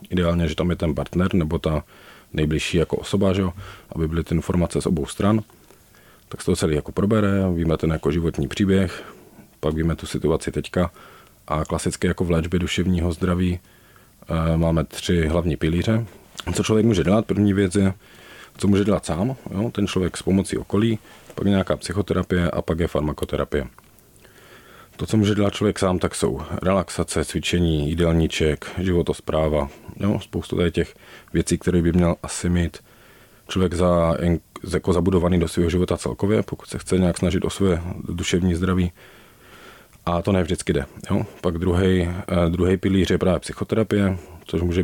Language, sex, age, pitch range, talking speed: Czech, male, 40-59, 80-95 Hz, 170 wpm